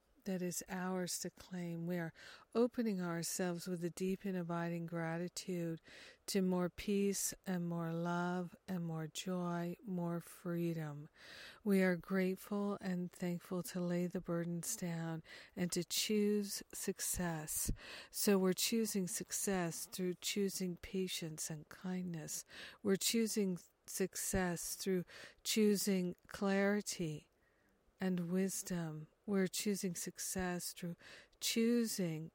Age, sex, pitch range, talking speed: 60-79, female, 170-190 Hz, 115 wpm